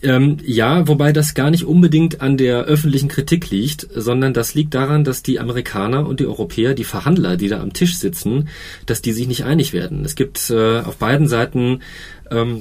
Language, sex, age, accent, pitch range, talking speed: German, male, 30-49, German, 115-150 Hz, 200 wpm